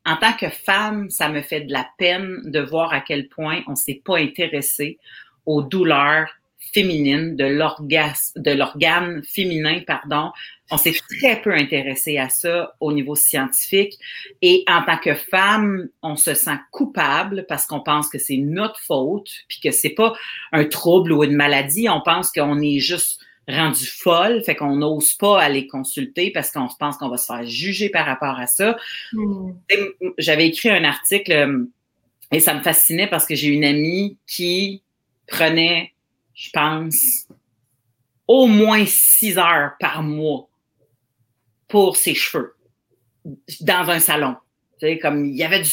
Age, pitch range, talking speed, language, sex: 40-59, 145-185 Hz, 160 wpm, French, female